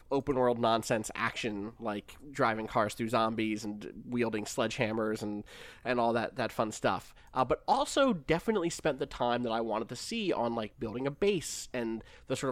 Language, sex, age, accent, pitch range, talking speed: English, male, 20-39, American, 110-130 Hz, 180 wpm